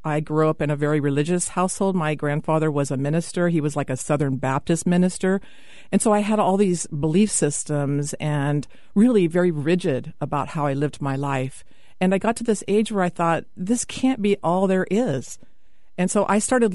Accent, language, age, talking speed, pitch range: American, English, 50-69, 205 wpm, 150-190 Hz